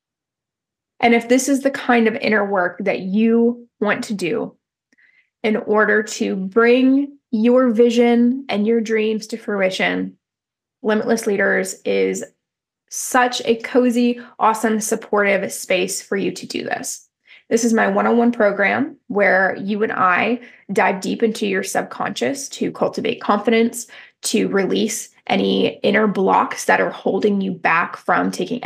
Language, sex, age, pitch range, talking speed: English, female, 20-39, 210-245 Hz, 140 wpm